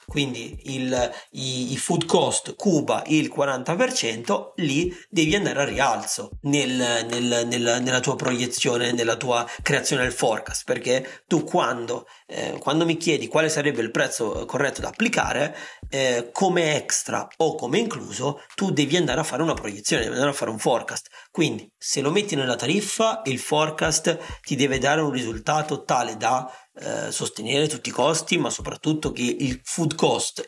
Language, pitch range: Italian, 130-165 Hz